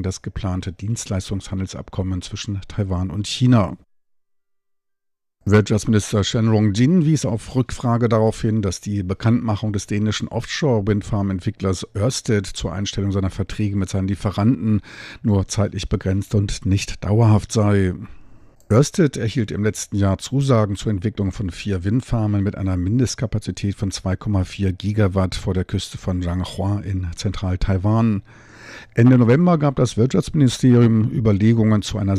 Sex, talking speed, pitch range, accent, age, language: male, 130 wpm, 95-115 Hz, German, 50-69, German